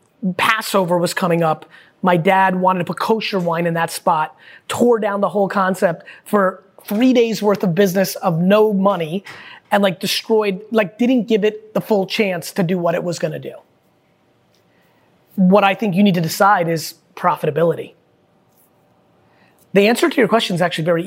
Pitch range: 175-210 Hz